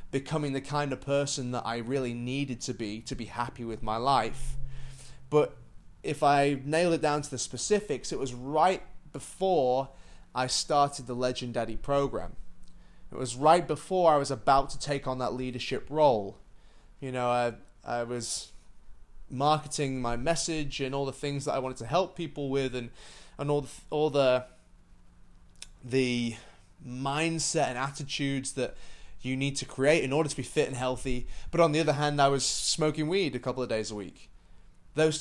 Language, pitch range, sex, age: English, 125-150 Hz, male, 20-39